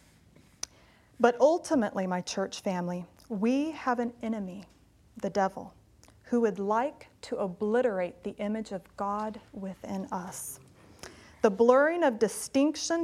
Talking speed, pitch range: 120 wpm, 200-255 Hz